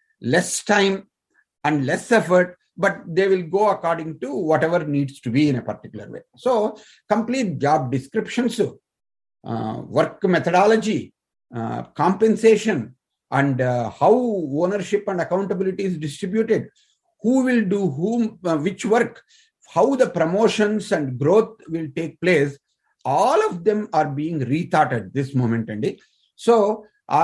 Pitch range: 145-210 Hz